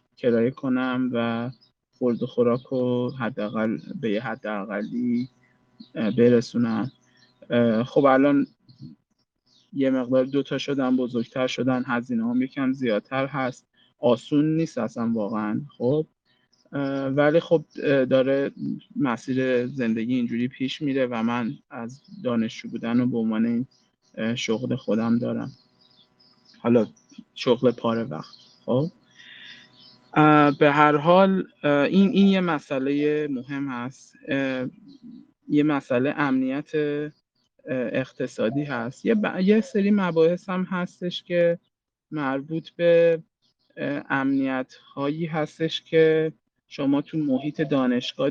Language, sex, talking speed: Persian, male, 110 wpm